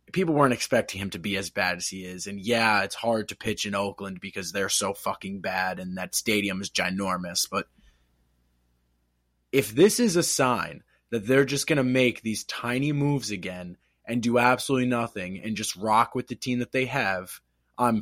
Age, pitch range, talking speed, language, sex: 20-39, 100-125 Hz, 195 wpm, English, male